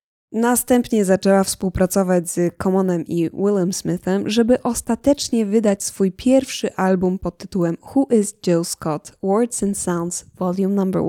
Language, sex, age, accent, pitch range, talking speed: Polish, female, 10-29, native, 185-240 Hz, 135 wpm